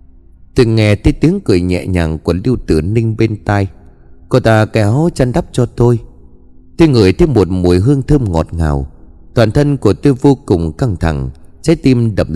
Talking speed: 200 wpm